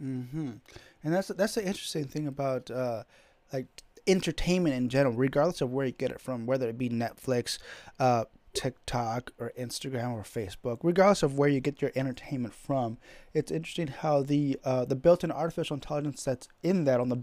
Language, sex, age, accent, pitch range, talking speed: English, male, 30-49, American, 130-160 Hz, 185 wpm